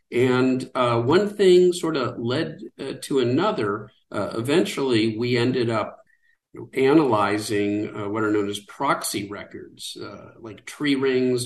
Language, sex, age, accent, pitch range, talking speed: English, male, 50-69, American, 115-145 Hz, 140 wpm